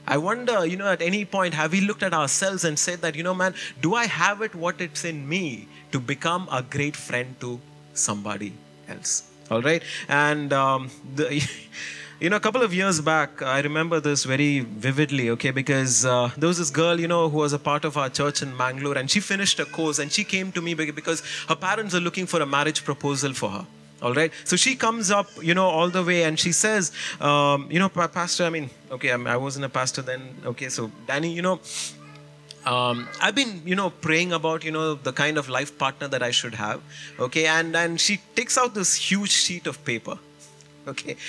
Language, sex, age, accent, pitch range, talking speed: English, male, 30-49, Indian, 140-180 Hz, 220 wpm